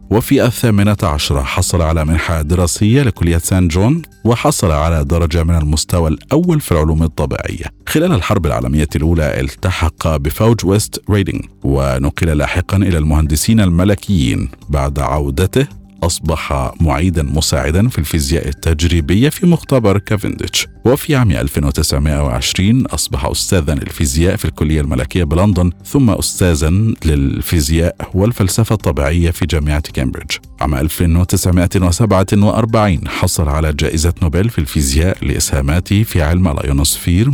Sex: male